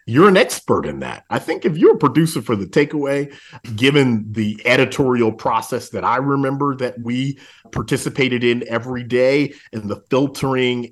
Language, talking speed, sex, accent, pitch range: English, 165 wpm, male, American, 110-135 Hz